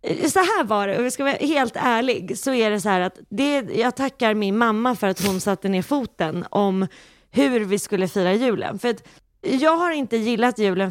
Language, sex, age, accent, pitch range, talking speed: Swedish, female, 20-39, native, 190-245 Hz, 220 wpm